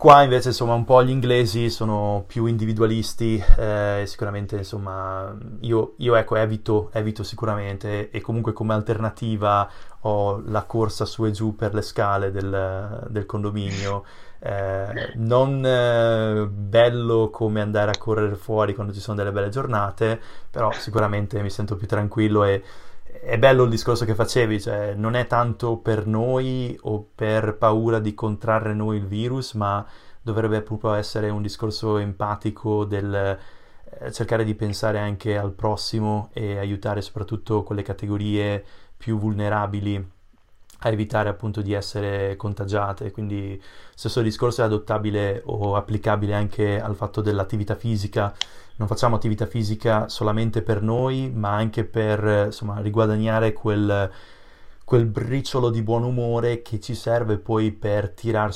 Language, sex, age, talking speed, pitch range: Italian, male, 20-39, 145 wpm, 100-110 Hz